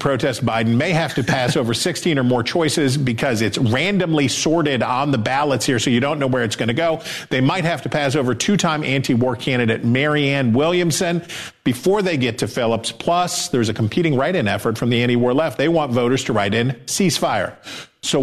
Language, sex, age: English, male, 50-69